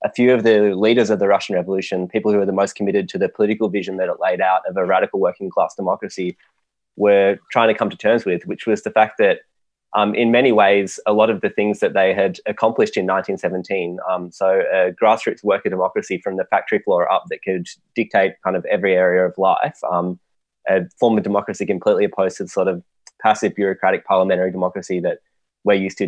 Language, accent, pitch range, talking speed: English, Australian, 95-105 Hz, 215 wpm